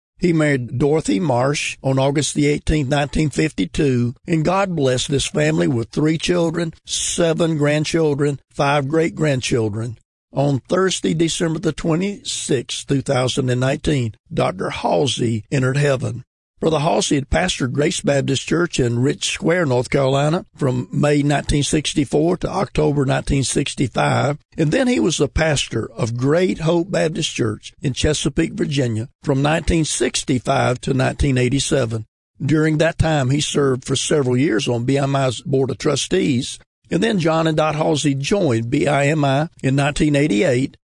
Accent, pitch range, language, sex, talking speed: American, 130-160 Hz, English, male, 130 wpm